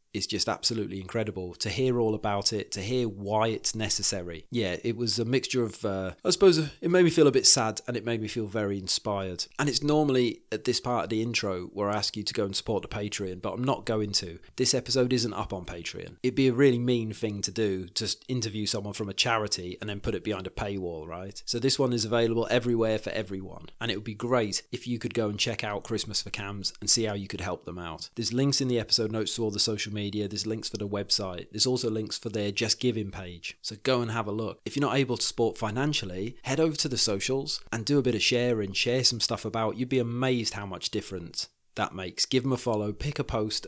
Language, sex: English, male